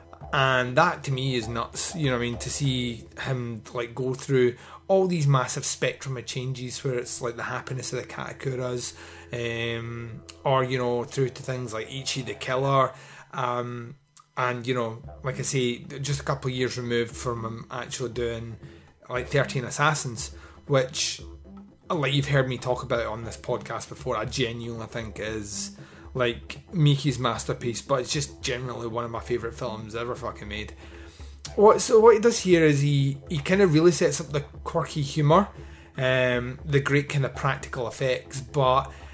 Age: 30-49